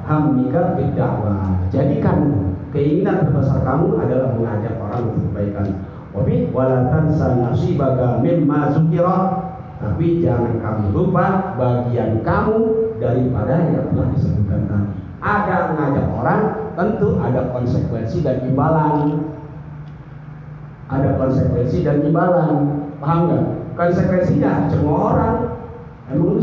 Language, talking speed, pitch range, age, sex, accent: Indonesian, 100 wpm, 130-170 Hz, 50-69, male, native